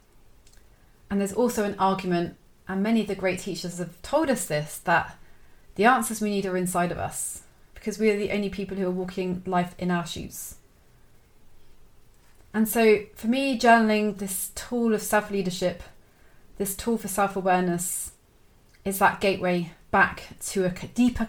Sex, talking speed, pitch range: female, 160 wpm, 180-220 Hz